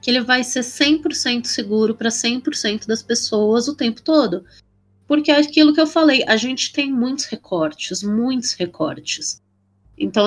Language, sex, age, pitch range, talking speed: Portuguese, female, 20-39, 180-260 Hz, 160 wpm